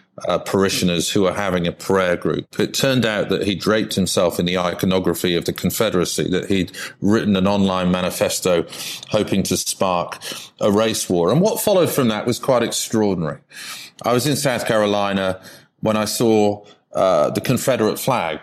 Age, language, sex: 40-59, English, male